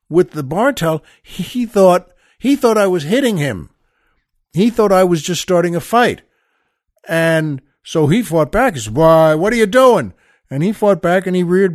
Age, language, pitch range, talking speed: 60-79, English, 145-200 Hz, 195 wpm